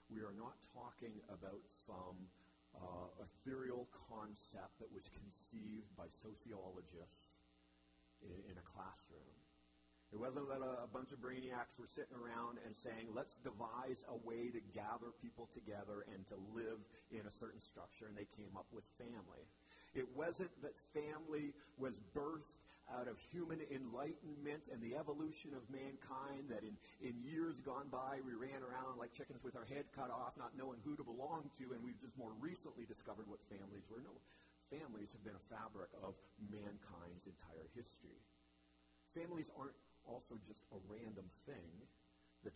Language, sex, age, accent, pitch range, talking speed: English, male, 40-59, American, 85-130 Hz, 165 wpm